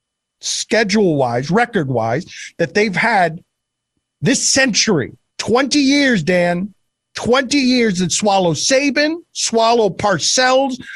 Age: 50-69